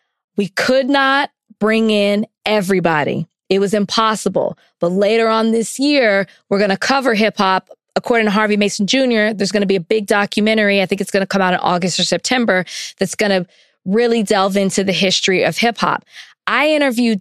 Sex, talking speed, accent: female, 195 wpm, American